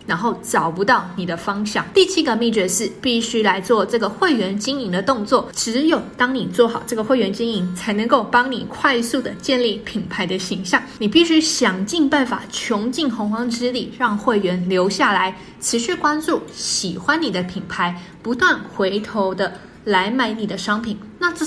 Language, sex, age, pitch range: Chinese, female, 20-39, 200-260 Hz